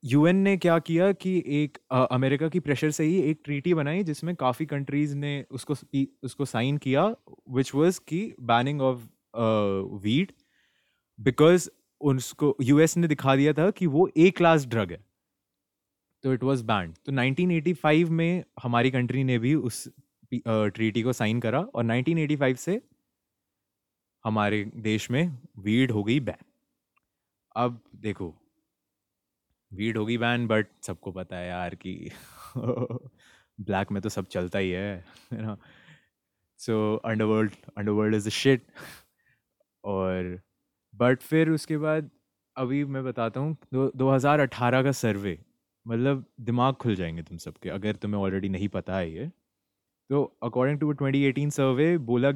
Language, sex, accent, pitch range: Hindi, male, native, 110-150 Hz